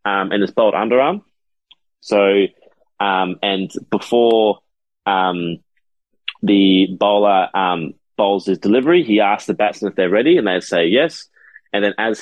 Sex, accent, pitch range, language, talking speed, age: male, Australian, 95-105 Hz, English, 145 wpm, 20-39